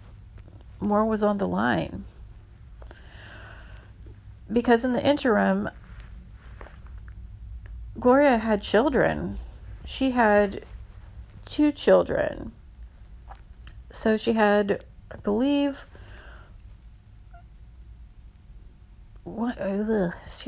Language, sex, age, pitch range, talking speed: English, female, 30-49, 165-215 Hz, 65 wpm